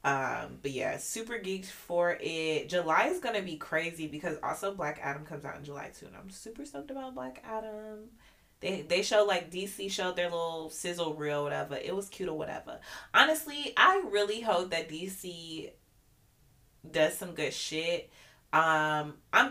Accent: American